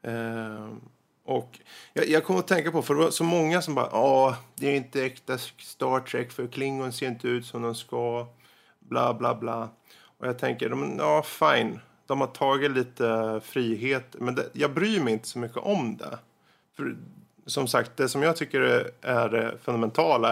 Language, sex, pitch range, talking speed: Swedish, male, 120-150 Hz, 190 wpm